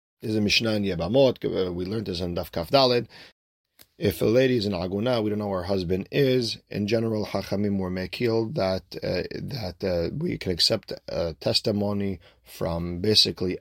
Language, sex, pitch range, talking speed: English, male, 95-115 Hz, 155 wpm